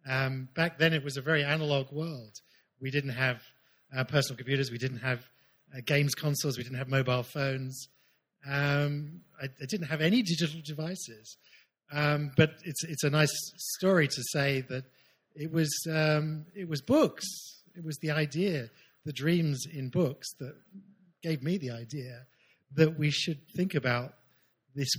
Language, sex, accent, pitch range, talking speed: English, male, British, 125-155 Hz, 165 wpm